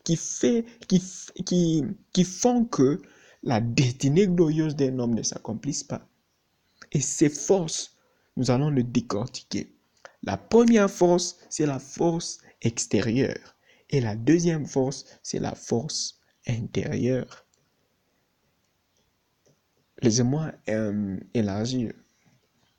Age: 60-79